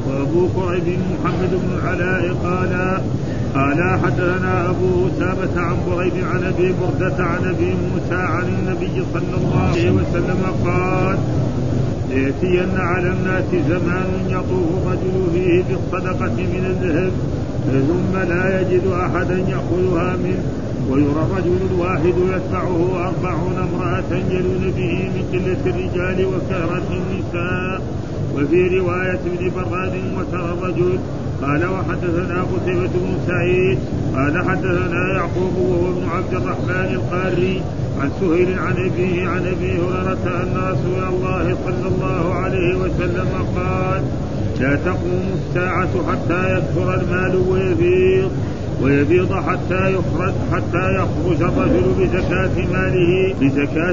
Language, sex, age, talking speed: Arabic, male, 50-69, 115 wpm